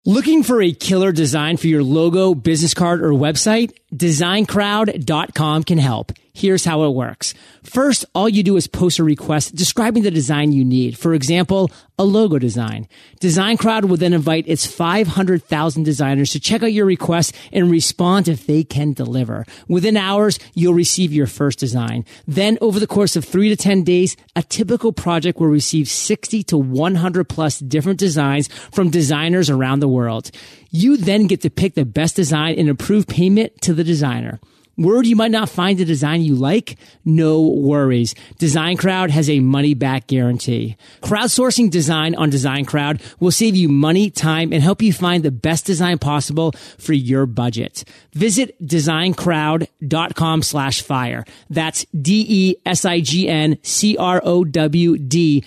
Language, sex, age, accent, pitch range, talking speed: English, male, 40-59, American, 145-190 Hz, 160 wpm